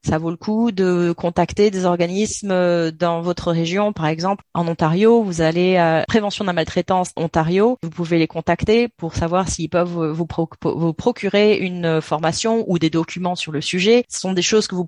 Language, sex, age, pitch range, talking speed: French, female, 30-49, 175-210 Hz, 190 wpm